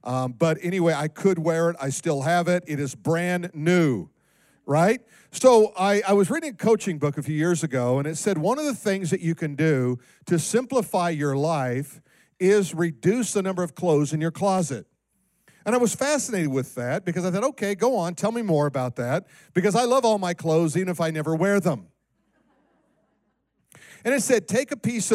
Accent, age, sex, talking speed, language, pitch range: American, 50-69, male, 210 wpm, English, 155-200 Hz